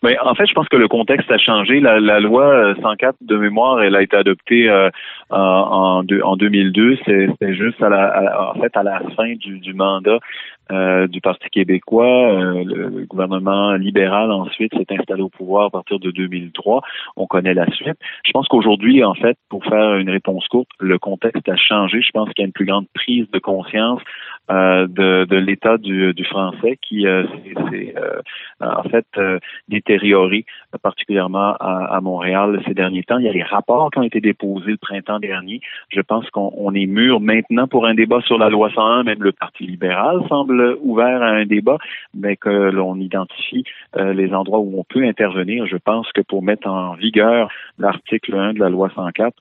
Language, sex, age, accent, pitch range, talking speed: French, male, 30-49, French, 95-110 Hz, 200 wpm